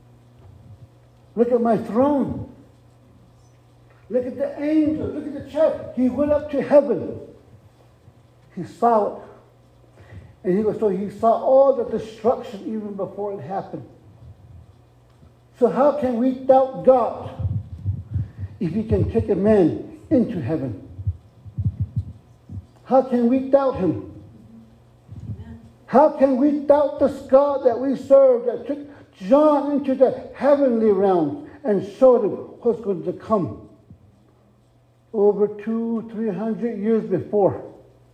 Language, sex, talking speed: English, male, 125 wpm